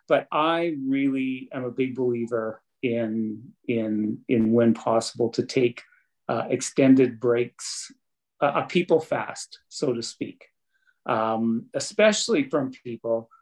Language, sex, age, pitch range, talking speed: English, male, 40-59, 115-135 Hz, 125 wpm